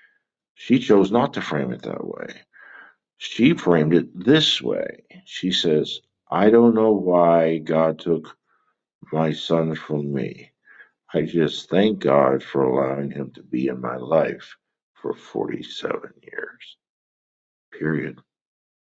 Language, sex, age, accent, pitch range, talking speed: English, male, 60-79, American, 75-95 Hz, 130 wpm